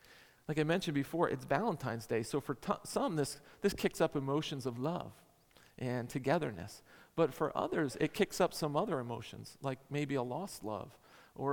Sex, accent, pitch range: male, American, 125-165 Hz